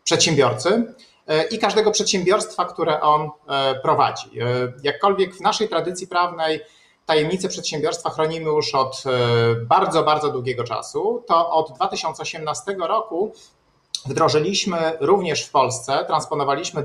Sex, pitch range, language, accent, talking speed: male, 140-185 Hz, Polish, native, 105 wpm